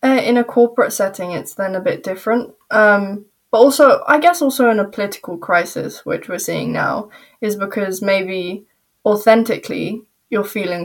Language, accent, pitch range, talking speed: English, British, 190-215 Hz, 165 wpm